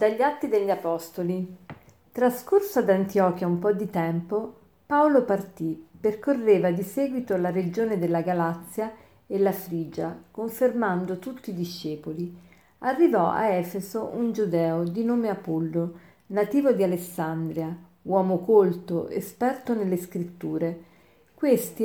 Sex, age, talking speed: female, 50-69, 120 wpm